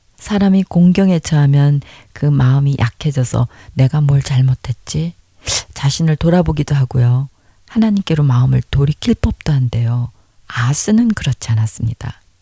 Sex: female